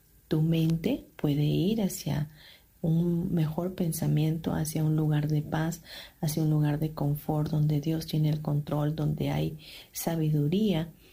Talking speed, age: 140 wpm, 40-59